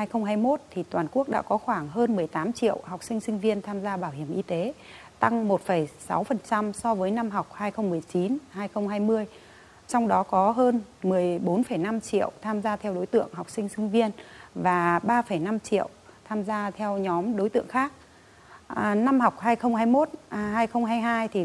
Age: 30-49